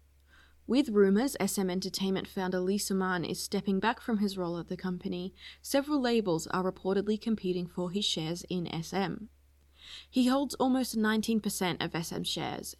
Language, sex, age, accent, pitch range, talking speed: English, female, 20-39, Australian, 175-215 Hz, 155 wpm